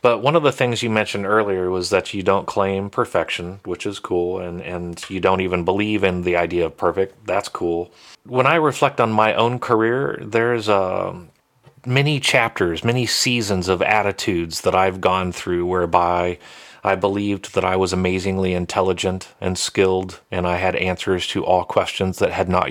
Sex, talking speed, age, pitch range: male, 180 wpm, 30-49, 90-100 Hz